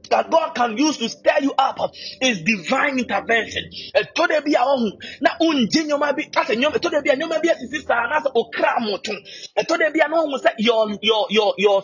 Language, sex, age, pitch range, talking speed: English, male, 30-49, 225-305 Hz, 70 wpm